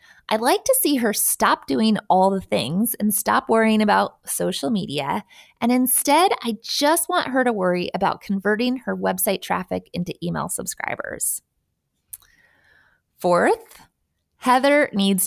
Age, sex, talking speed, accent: 20-39, female, 140 wpm, American